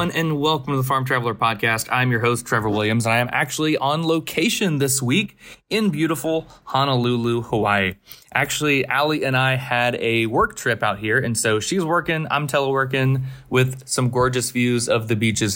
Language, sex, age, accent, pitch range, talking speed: English, male, 20-39, American, 115-145 Hz, 180 wpm